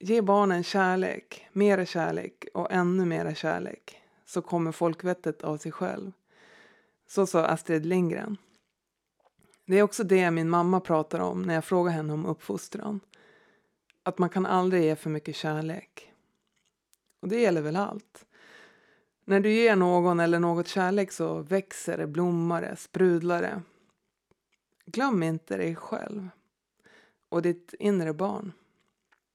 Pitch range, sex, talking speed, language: 170-205 Hz, female, 140 wpm, Swedish